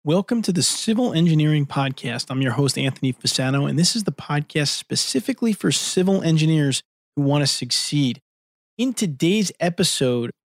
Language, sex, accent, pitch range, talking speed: English, male, American, 130-155 Hz, 155 wpm